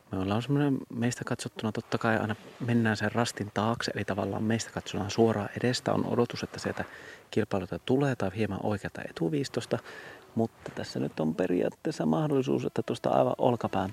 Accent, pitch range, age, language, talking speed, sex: native, 100-120 Hz, 30-49, Finnish, 150 wpm, male